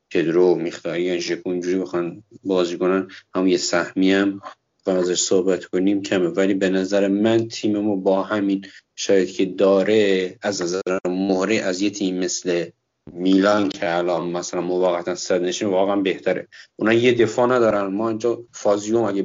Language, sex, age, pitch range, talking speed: Persian, male, 50-69, 90-105 Hz, 155 wpm